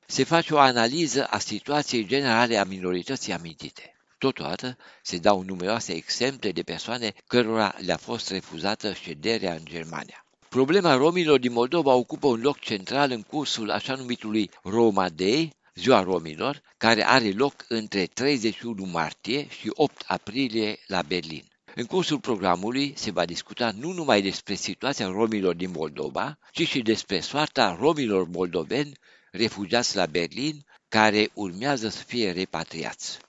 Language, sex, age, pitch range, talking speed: Romanian, male, 60-79, 95-125 Hz, 140 wpm